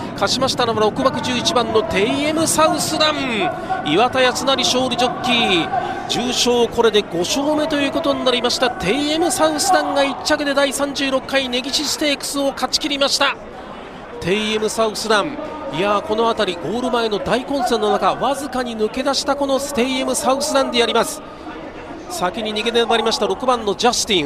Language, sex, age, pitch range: Japanese, male, 40-59, 215-275 Hz